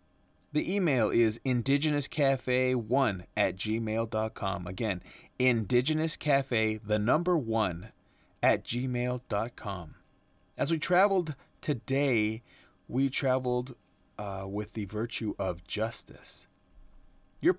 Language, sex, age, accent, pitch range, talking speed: English, male, 30-49, American, 90-135 Hz, 90 wpm